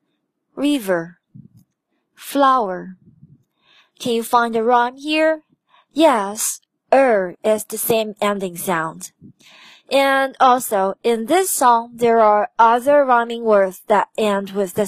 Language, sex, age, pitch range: Chinese, female, 20-39, 205-250 Hz